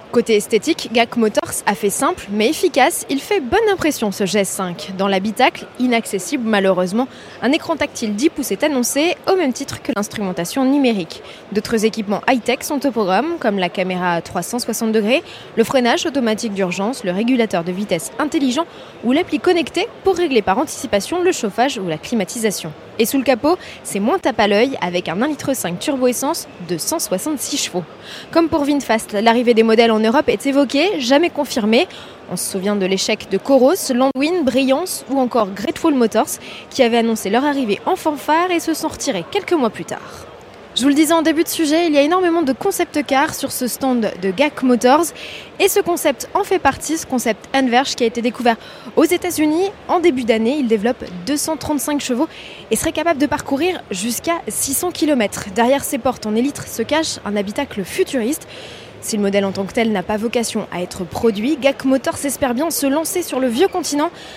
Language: French